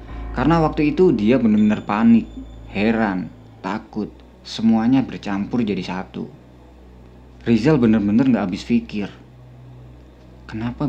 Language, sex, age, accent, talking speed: Indonesian, male, 20-39, native, 100 wpm